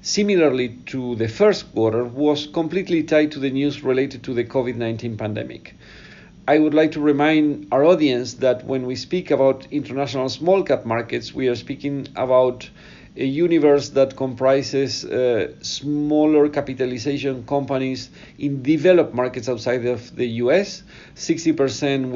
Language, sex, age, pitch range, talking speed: English, male, 50-69, 125-155 Hz, 140 wpm